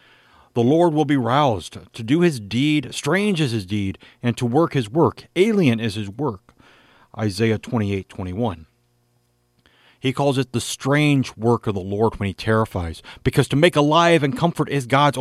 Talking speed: 180 wpm